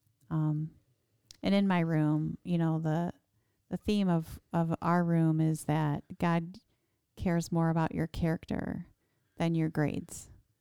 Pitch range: 130-170 Hz